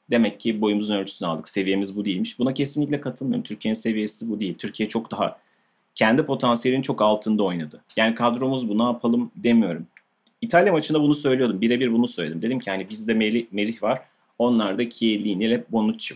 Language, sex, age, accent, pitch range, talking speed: Turkish, male, 30-49, native, 100-125 Hz, 170 wpm